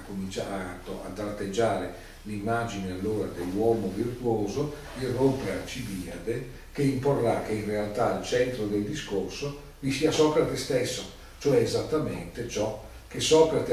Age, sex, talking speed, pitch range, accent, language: 40-59, male, 120 wpm, 95-125 Hz, native, Italian